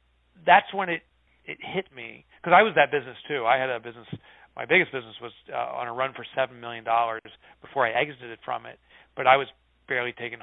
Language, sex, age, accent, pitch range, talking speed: English, male, 40-59, American, 115-145 Hz, 215 wpm